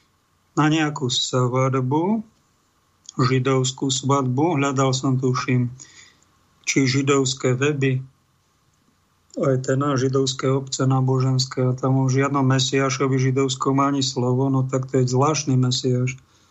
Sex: male